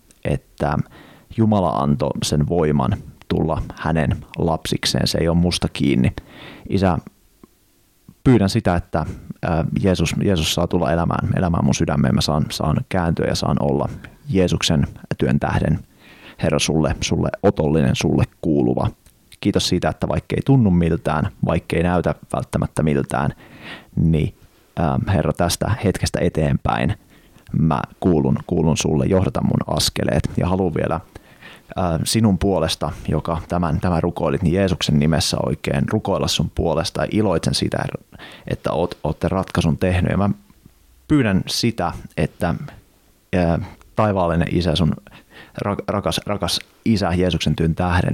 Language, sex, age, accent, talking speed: Finnish, male, 30-49, native, 130 wpm